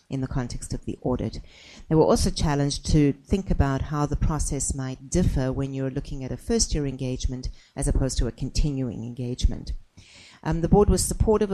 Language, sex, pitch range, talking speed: English, female, 125-145 Hz, 185 wpm